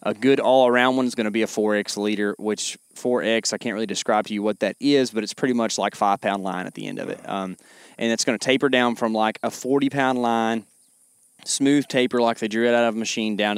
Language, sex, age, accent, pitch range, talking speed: English, male, 20-39, American, 105-125 Hz, 250 wpm